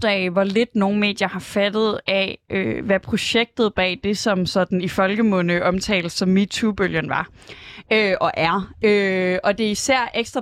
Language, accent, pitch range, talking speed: Danish, native, 185-225 Hz, 165 wpm